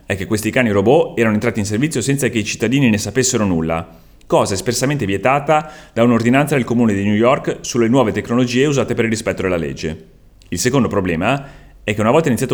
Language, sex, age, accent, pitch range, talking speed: Italian, male, 30-49, native, 95-130 Hz, 205 wpm